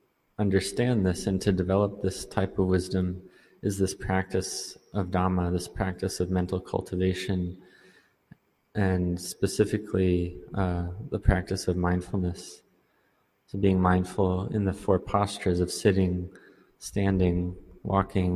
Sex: male